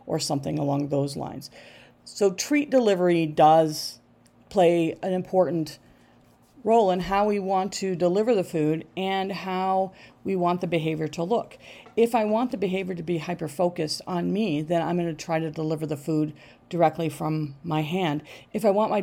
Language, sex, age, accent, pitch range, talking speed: English, female, 40-59, American, 160-195 Hz, 175 wpm